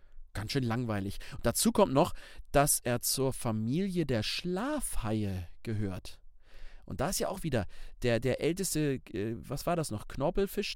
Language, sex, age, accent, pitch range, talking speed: German, male, 40-59, German, 115-170 Hz, 155 wpm